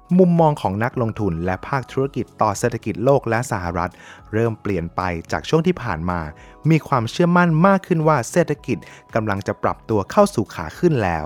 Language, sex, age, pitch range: Thai, male, 20-39, 100-140 Hz